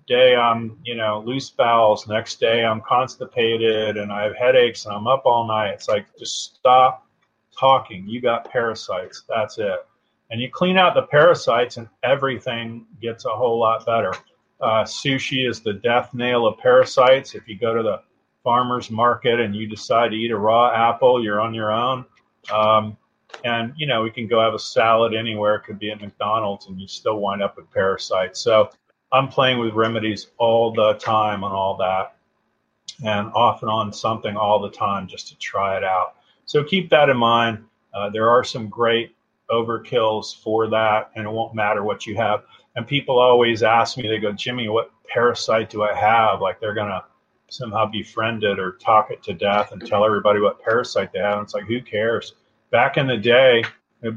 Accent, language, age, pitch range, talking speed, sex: American, English, 40-59, 110-125 Hz, 195 wpm, male